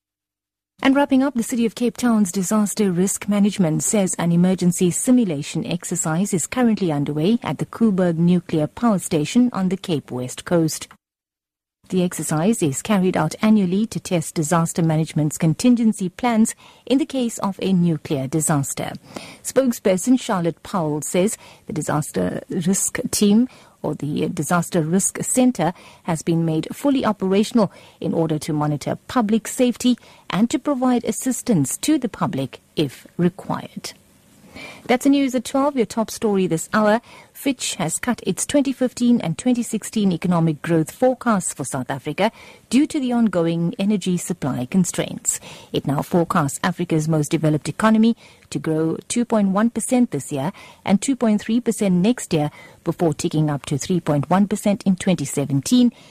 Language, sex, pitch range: English, female, 160-230 Hz